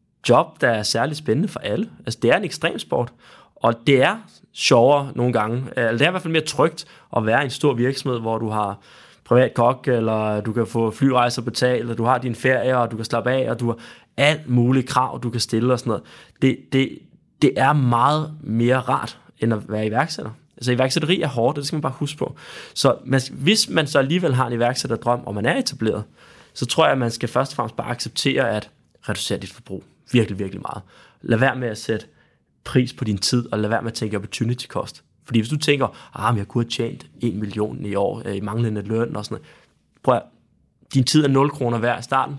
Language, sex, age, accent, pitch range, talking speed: English, male, 20-39, Danish, 115-140 Hz, 230 wpm